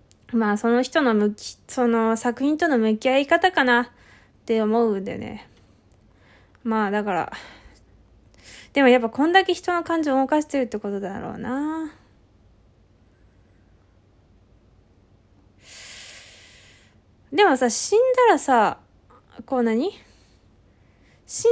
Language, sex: Japanese, female